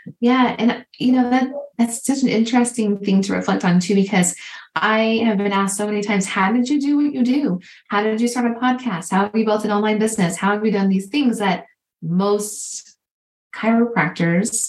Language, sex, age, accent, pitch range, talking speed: English, female, 20-39, American, 175-230 Hz, 210 wpm